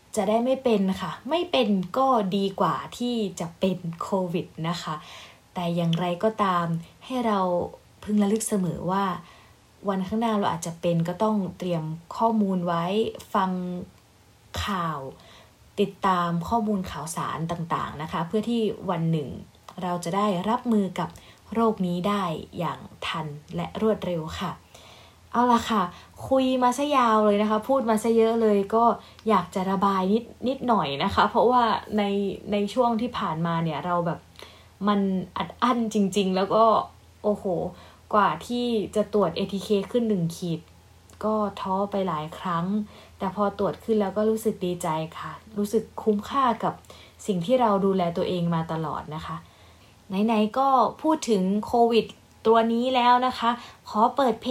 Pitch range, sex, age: 180-225 Hz, female, 20-39